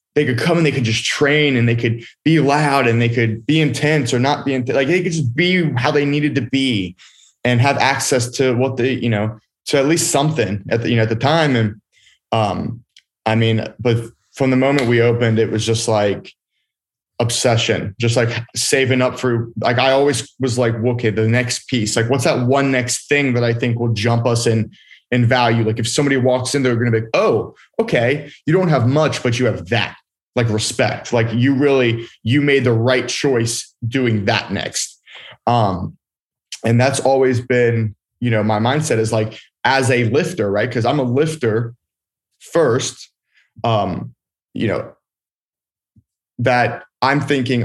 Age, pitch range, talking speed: 20-39, 115-135 Hz, 195 wpm